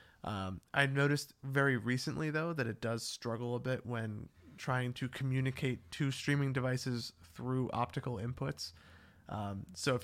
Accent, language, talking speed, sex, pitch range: American, English, 150 wpm, male, 115-135 Hz